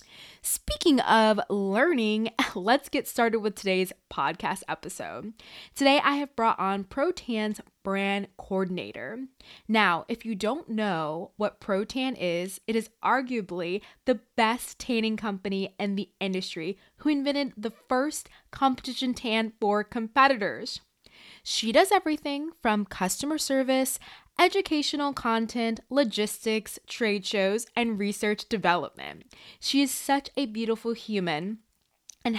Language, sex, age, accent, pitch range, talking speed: English, female, 20-39, American, 200-255 Hz, 120 wpm